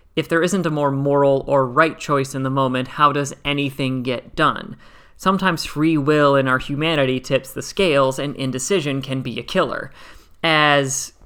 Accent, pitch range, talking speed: American, 135-155 Hz, 175 wpm